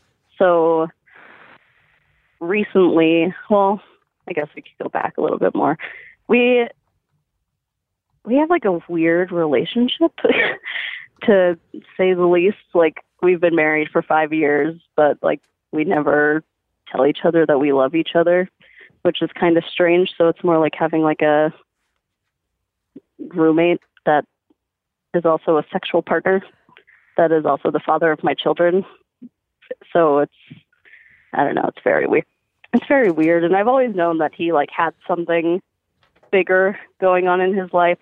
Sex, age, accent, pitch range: female, 20-39, American, 155-190 Hz